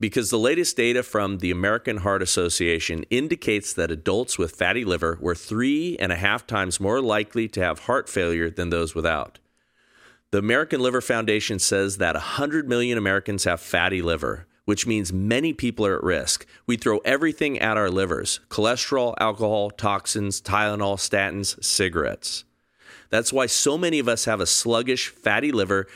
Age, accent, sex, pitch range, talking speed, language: 40-59, American, male, 95-120 Hz, 165 wpm, English